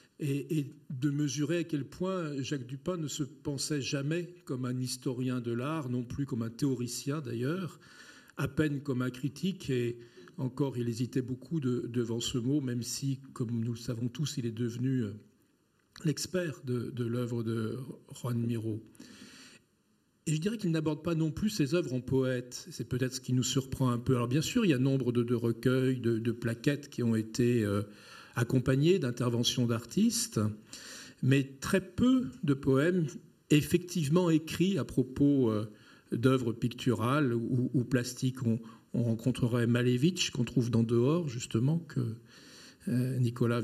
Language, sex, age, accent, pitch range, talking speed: French, male, 50-69, French, 120-150 Hz, 165 wpm